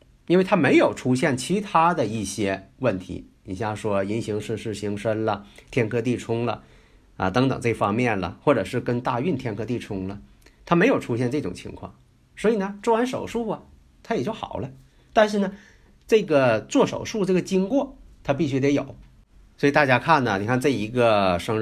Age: 50-69